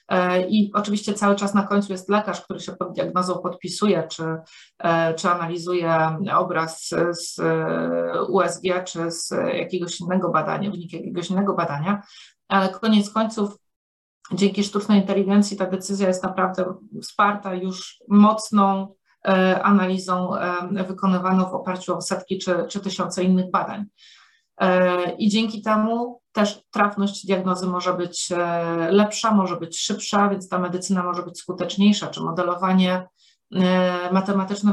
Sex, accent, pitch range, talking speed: female, Polish, 180-210 Hz, 125 wpm